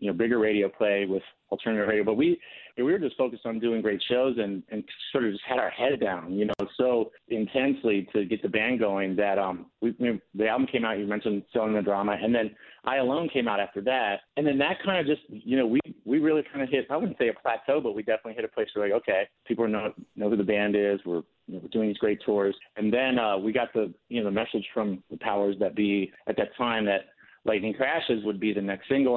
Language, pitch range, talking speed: English, 100-120 Hz, 265 wpm